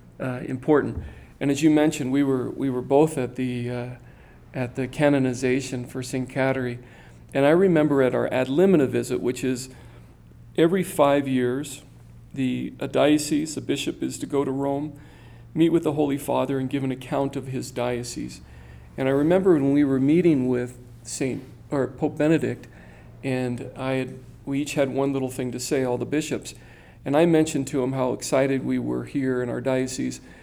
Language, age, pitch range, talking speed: English, 40-59, 125-140 Hz, 185 wpm